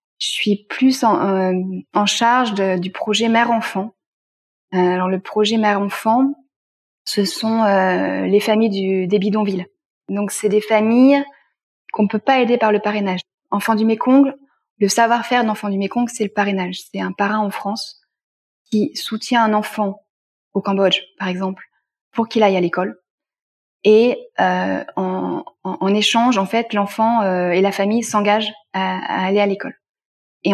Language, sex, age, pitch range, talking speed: French, female, 20-39, 190-225 Hz, 165 wpm